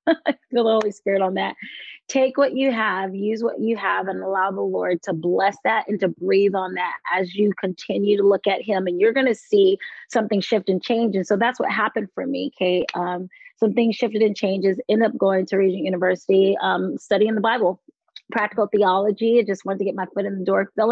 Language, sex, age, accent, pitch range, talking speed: English, female, 30-49, American, 185-225 Hz, 225 wpm